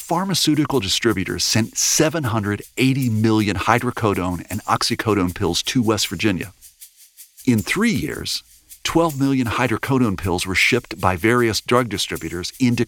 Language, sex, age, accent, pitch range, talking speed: English, male, 50-69, American, 100-135 Hz, 120 wpm